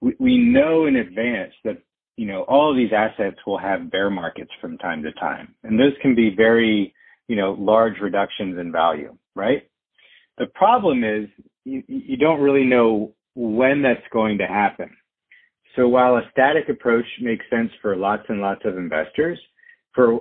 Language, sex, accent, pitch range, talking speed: English, male, American, 105-135 Hz, 170 wpm